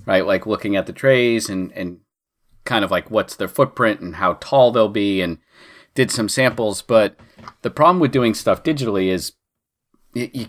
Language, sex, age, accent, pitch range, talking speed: English, male, 40-59, American, 95-125 Hz, 185 wpm